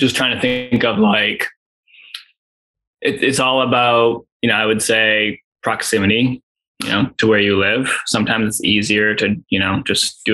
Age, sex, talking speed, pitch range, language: 10-29, male, 170 wpm, 110-135 Hz, English